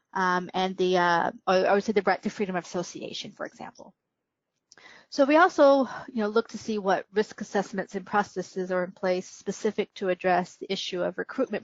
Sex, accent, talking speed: female, American, 195 wpm